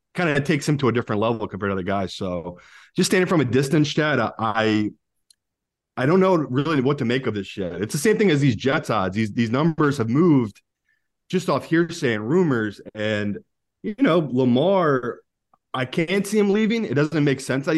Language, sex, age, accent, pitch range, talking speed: English, male, 30-49, American, 110-155 Hz, 210 wpm